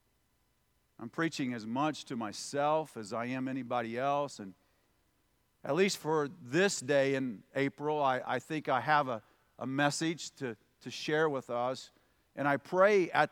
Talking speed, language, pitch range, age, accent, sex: 160 wpm, English, 135-185 Hz, 50-69, American, male